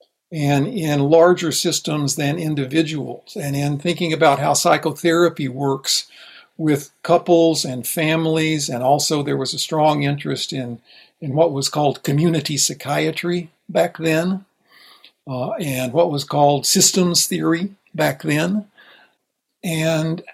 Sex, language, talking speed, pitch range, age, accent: male, English, 125 wpm, 145-175 Hz, 60-79, American